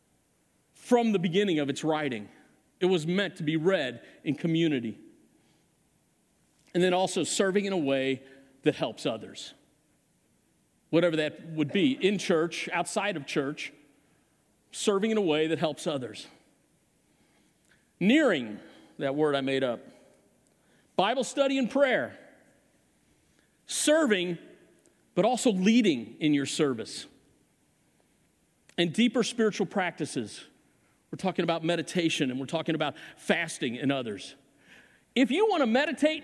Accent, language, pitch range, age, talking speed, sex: American, English, 155-245 Hz, 50-69, 130 wpm, male